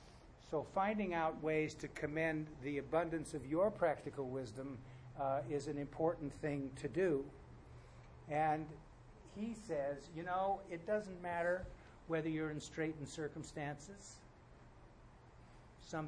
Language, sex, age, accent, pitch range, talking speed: English, male, 60-79, American, 135-160 Hz, 125 wpm